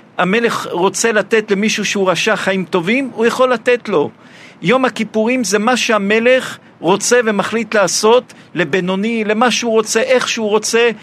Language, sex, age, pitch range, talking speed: Hebrew, male, 50-69, 185-225 Hz, 145 wpm